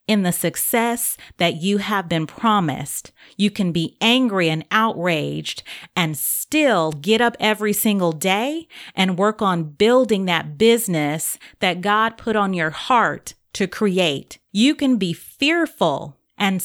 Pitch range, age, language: 170-225 Hz, 30-49, English